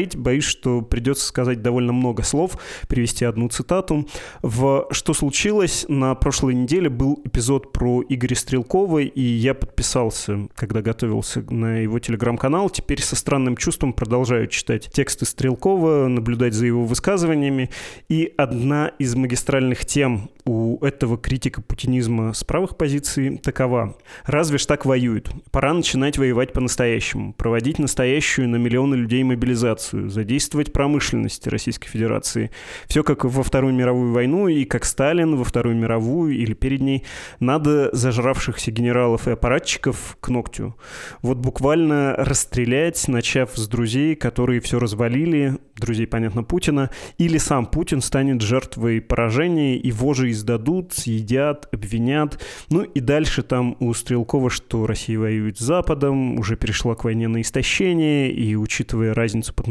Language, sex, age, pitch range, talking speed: Russian, male, 20-39, 120-140 Hz, 140 wpm